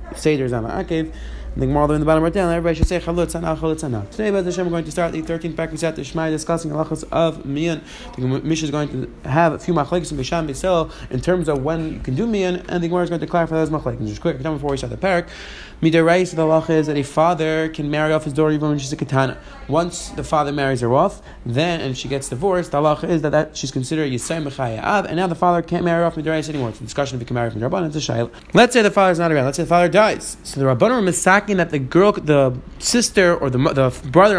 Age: 20-39